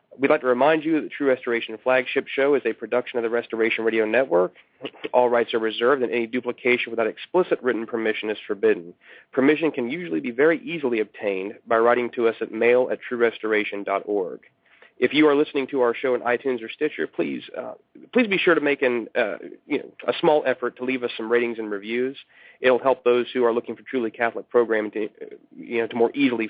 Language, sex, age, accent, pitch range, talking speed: English, male, 40-59, American, 115-140 Hz, 215 wpm